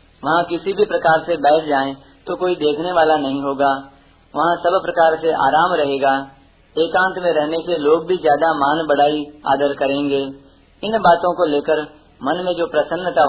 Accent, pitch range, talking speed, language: native, 135-175 Hz, 170 wpm, Hindi